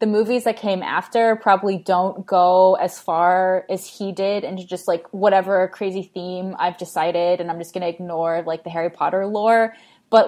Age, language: 20-39, English